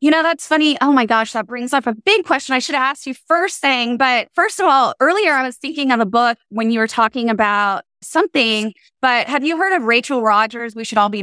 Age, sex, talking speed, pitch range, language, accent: 20-39, female, 255 wpm, 230-300 Hz, English, American